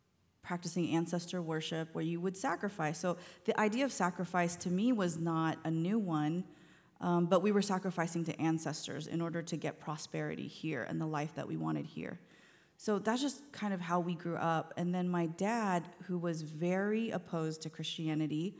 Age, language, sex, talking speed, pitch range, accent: 30-49, English, female, 185 wpm, 160-190 Hz, American